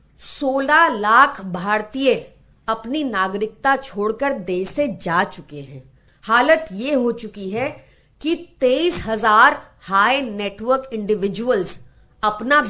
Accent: native